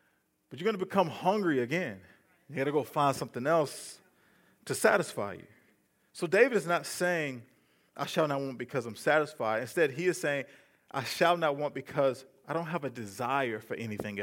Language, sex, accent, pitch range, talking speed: English, male, American, 125-165 Hz, 190 wpm